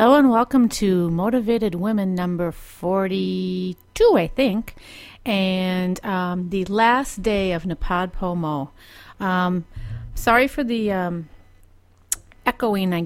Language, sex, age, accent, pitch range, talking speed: English, female, 40-59, American, 175-220 Hz, 115 wpm